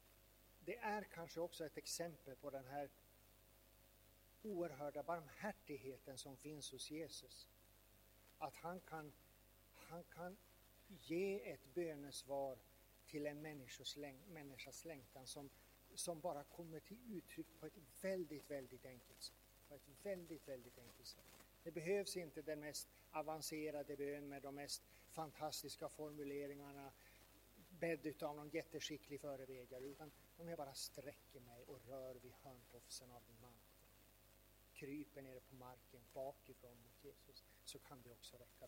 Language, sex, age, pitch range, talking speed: Swedish, male, 50-69, 110-150 Hz, 135 wpm